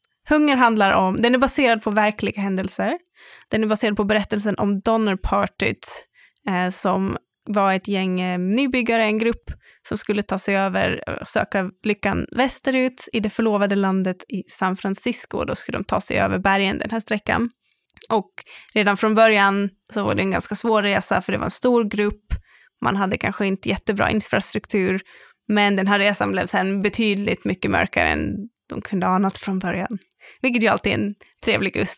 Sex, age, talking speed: female, 20-39, 180 wpm